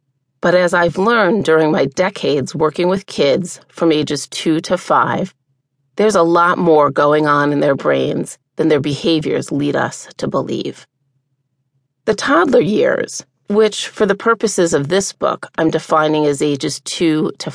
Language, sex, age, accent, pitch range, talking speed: English, female, 30-49, American, 140-195 Hz, 160 wpm